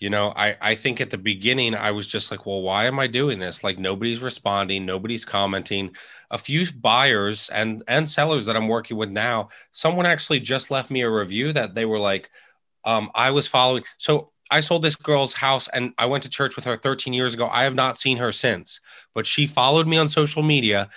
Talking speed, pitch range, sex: 225 wpm, 105-140 Hz, male